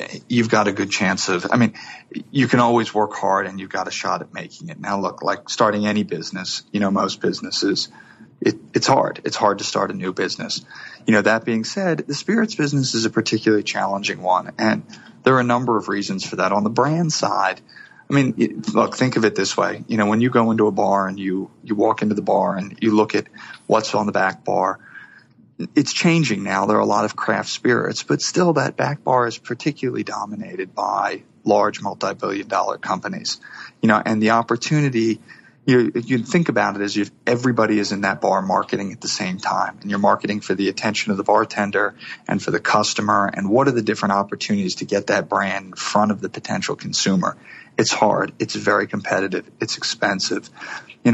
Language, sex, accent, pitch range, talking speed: English, male, American, 105-125 Hz, 210 wpm